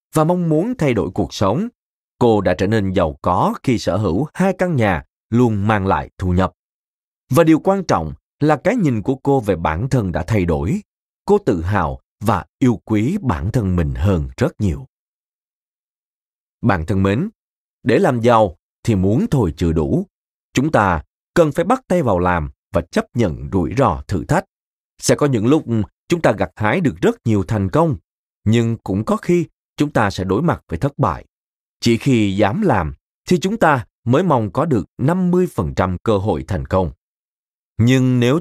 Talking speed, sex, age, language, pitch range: 185 wpm, male, 20-39, Vietnamese, 95-150 Hz